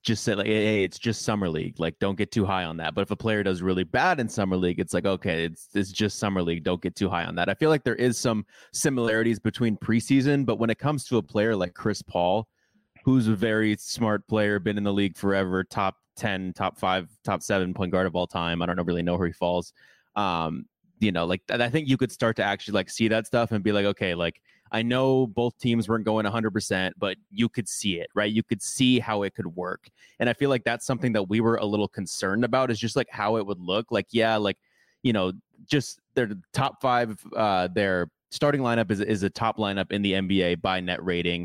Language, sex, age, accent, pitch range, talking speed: English, male, 20-39, American, 95-115 Hz, 245 wpm